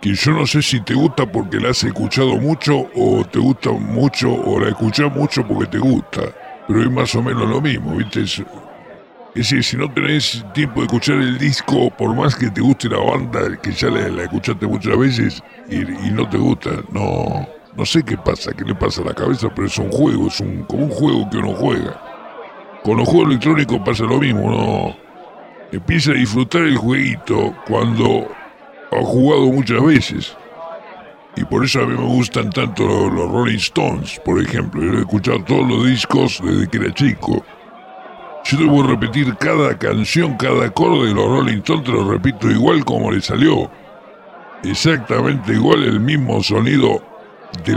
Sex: female